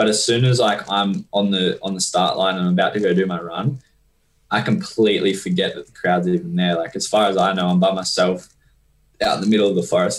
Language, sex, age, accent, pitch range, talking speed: English, male, 10-29, Australian, 90-105 Hz, 260 wpm